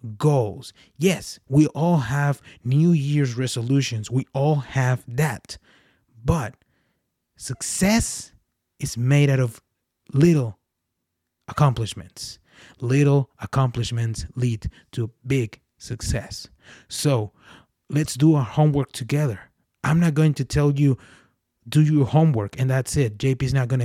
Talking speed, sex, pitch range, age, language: 120 wpm, male, 115-145 Hz, 30-49, English